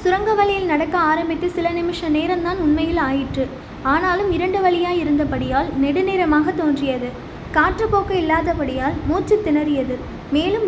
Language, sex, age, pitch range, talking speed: Tamil, female, 20-39, 290-355 Hz, 105 wpm